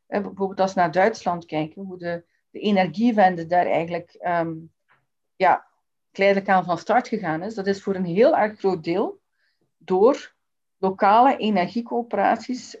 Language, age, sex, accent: Dutch, 40-59, female, Dutch